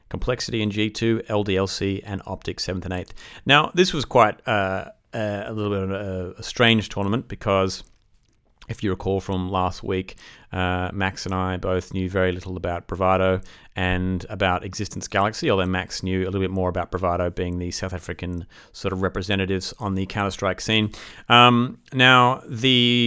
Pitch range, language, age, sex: 90-110 Hz, English, 30-49, male